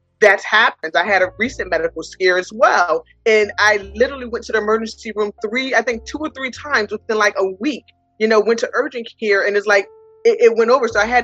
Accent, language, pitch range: American, English, 190-240 Hz